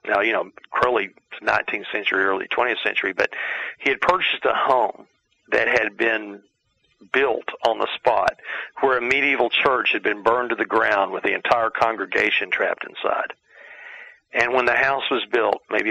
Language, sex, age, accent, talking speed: English, male, 50-69, American, 170 wpm